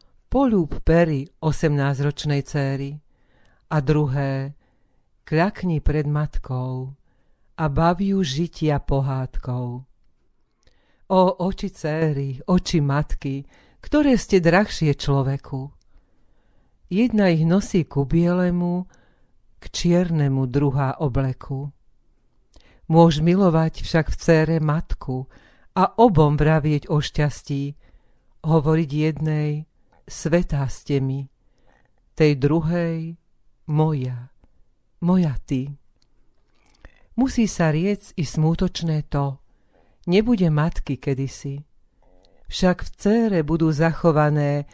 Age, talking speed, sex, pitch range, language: 50-69, 90 wpm, female, 140-175 Hz, Slovak